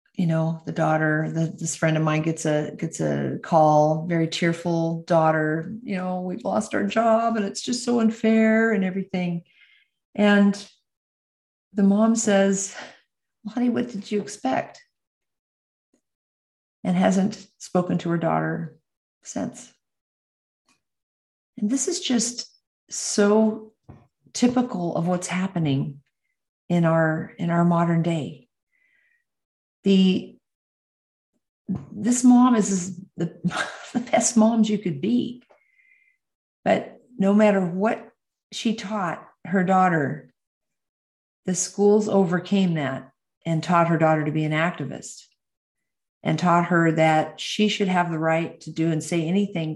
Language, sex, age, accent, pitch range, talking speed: English, female, 50-69, American, 160-215 Hz, 130 wpm